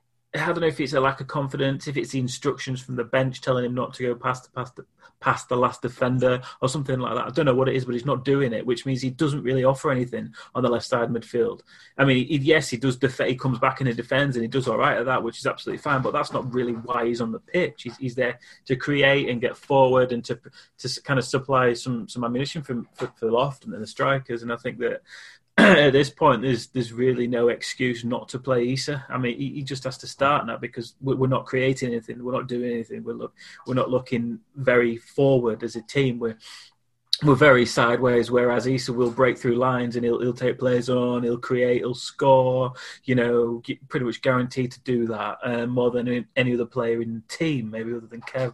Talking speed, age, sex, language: 245 wpm, 30-49, male, English